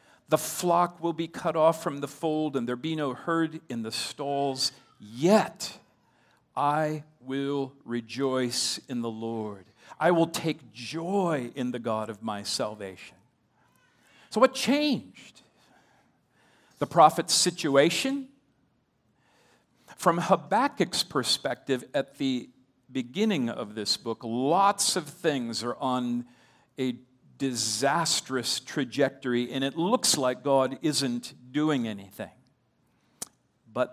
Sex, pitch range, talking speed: male, 120-155 Hz, 115 wpm